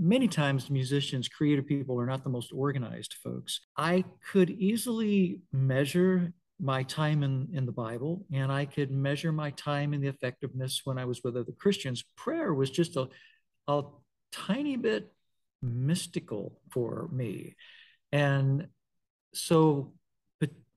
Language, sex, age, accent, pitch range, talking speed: English, male, 50-69, American, 130-170 Hz, 140 wpm